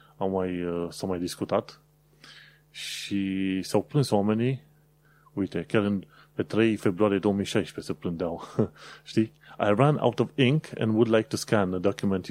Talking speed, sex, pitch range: 160 wpm, male, 95-130 Hz